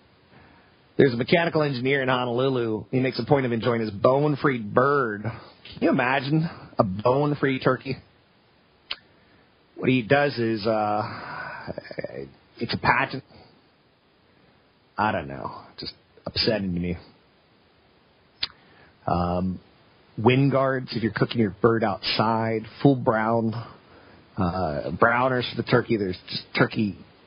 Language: English